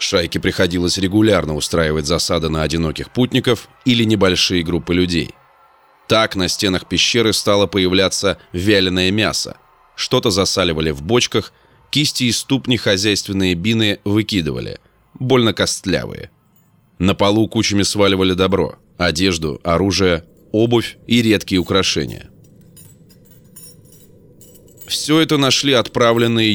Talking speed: 105 wpm